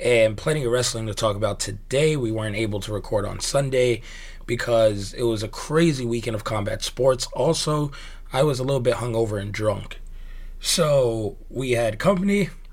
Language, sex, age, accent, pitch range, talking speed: English, male, 20-39, American, 110-135 Hz, 175 wpm